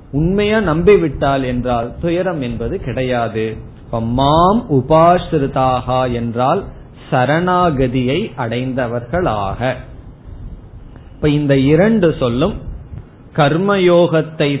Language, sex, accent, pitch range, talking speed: Tamil, male, native, 125-165 Hz, 65 wpm